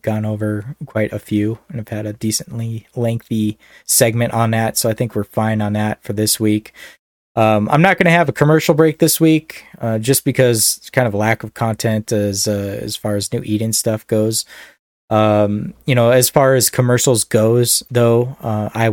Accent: American